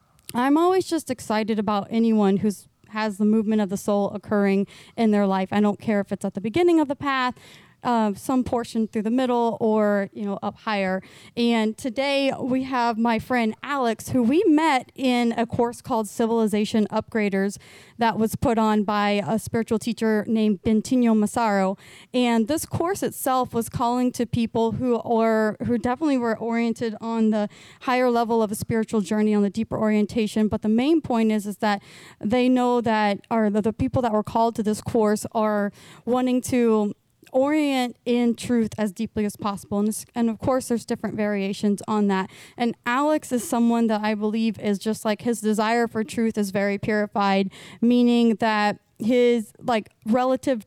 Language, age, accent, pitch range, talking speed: English, 30-49, American, 210-240 Hz, 180 wpm